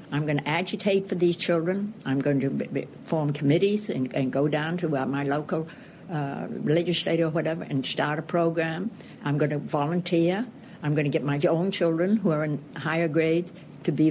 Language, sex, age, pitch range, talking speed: English, female, 60-79, 150-185 Hz, 190 wpm